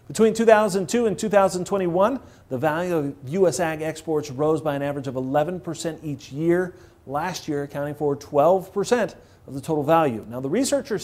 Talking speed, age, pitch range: 165 wpm, 40-59, 135-180 Hz